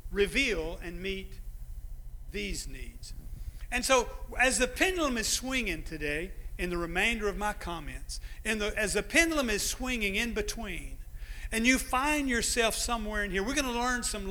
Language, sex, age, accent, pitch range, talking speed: English, male, 50-69, American, 155-225 Hz, 170 wpm